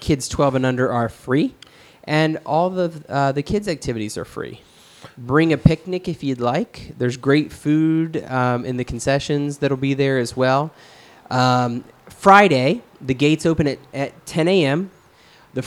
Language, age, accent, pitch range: English, 20-39, American, 130-160 Hz